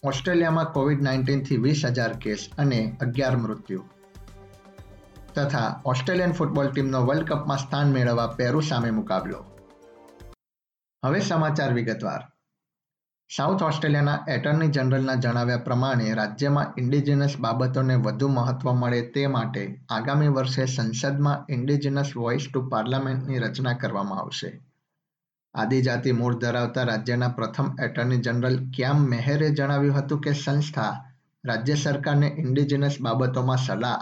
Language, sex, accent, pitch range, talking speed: Gujarati, male, native, 125-145 Hz, 70 wpm